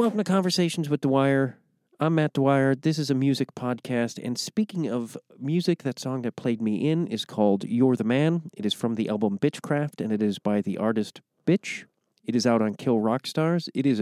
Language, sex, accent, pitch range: English, male, American, 115-155 Hz